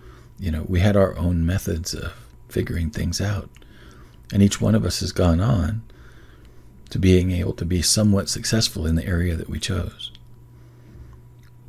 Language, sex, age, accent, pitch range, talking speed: English, male, 50-69, American, 85-120 Hz, 165 wpm